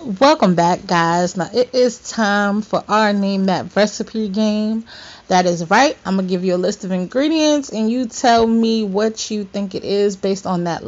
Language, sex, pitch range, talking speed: English, female, 195-240 Hz, 205 wpm